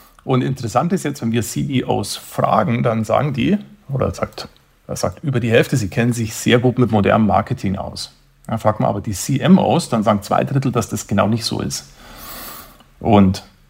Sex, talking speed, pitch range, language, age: male, 195 wpm, 105-125 Hz, English, 50-69